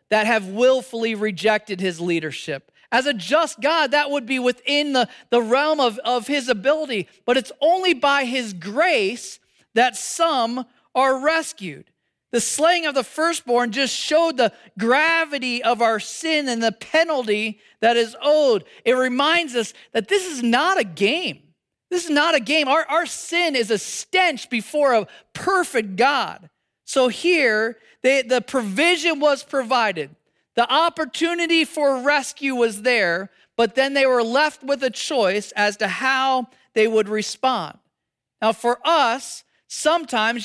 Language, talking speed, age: English, 155 wpm, 40-59